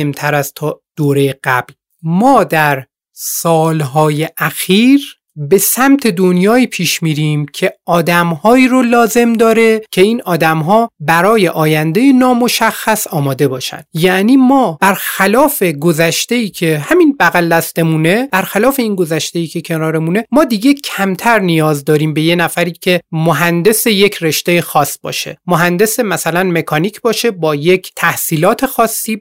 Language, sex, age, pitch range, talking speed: Persian, male, 30-49, 160-225 Hz, 125 wpm